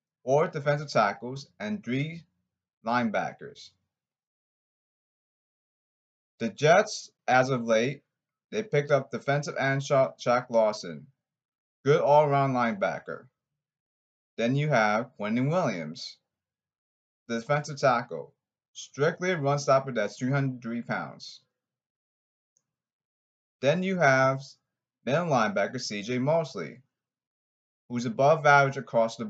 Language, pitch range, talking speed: English, 110-145 Hz, 100 wpm